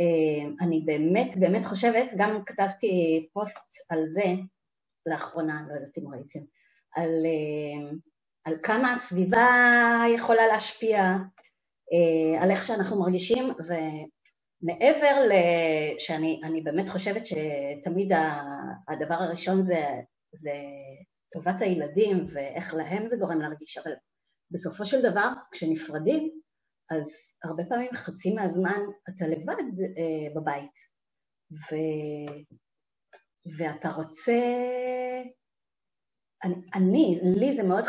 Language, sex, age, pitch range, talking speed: Hebrew, female, 30-49, 160-215 Hz, 100 wpm